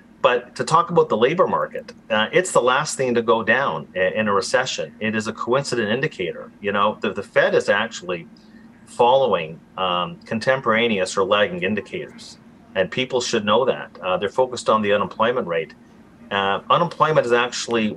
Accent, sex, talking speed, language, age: American, male, 175 wpm, English, 40-59